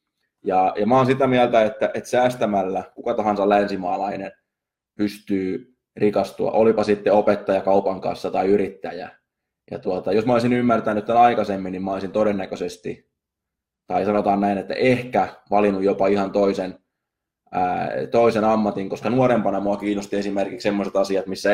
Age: 20-39